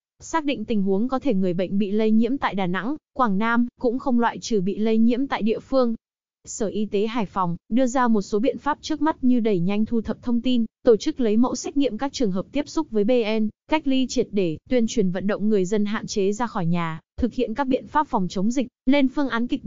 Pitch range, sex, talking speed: 205-255 Hz, female, 260 wpm